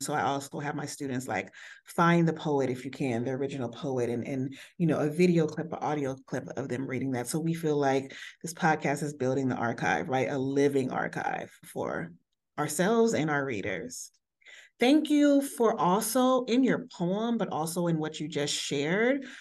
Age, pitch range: 30-49, 145-185 Hz